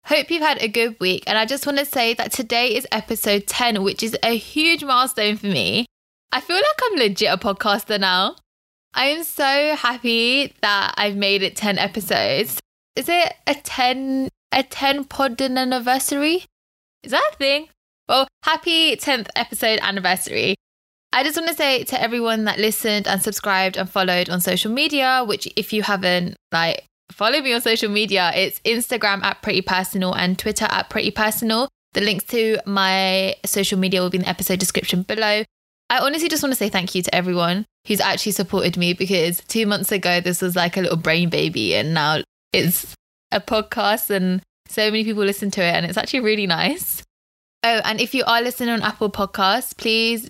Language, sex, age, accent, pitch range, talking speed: English, female, 10-29, British, 190-250 Hz, 190 wpm